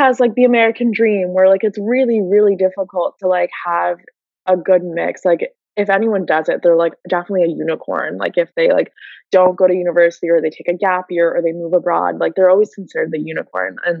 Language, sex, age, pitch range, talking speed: English, female, 20-39, 170-200 Hz, 225 wpm